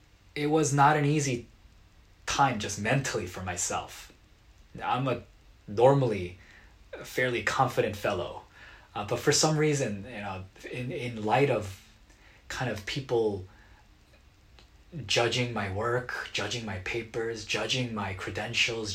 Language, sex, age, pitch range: Korean, male, 20-39, 95-115 Hz